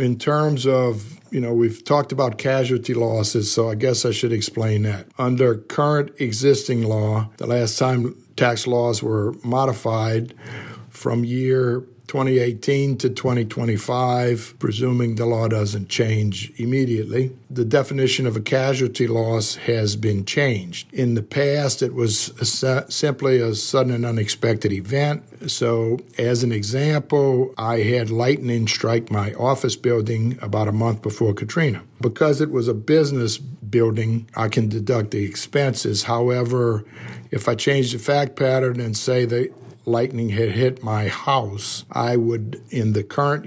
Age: 60-79